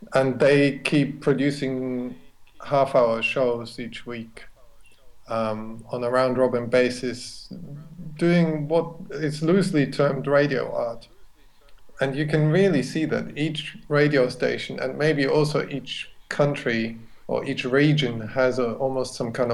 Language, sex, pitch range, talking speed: English, male, 125-145 Hz, 125 wpm